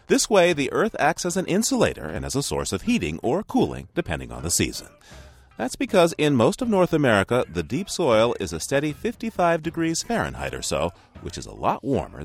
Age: 40-59